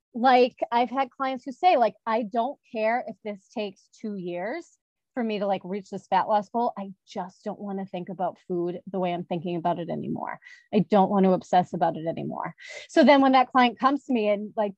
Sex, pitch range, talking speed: female, 195-260 Hz, 230 wpm